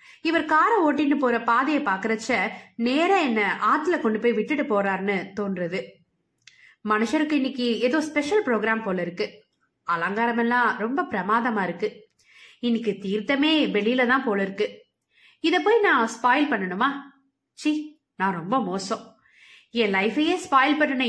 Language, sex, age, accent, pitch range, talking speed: Tamil, female, 20-39, native, 215-290 Hz, 130 wpm